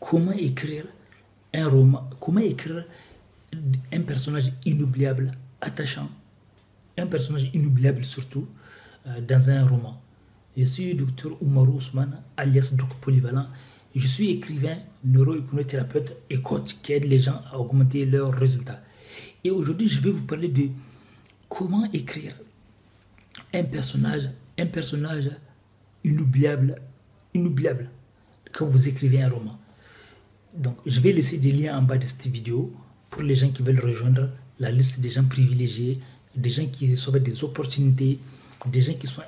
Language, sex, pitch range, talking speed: French, male, 125-145 Hz, 140 wpm